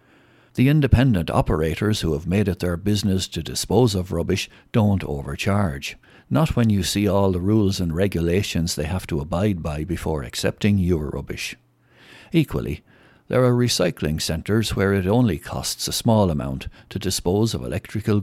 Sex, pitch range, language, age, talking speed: male, 80-115 Hz, English, 60-79, 160 wpm